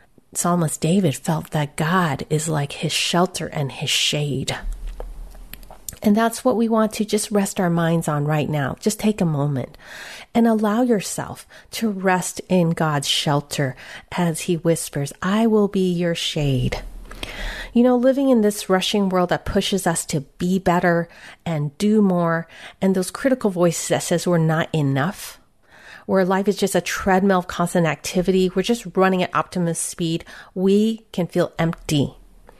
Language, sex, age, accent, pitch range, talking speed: English, female, 40-59, American, 155-205 Hz, 165 wpm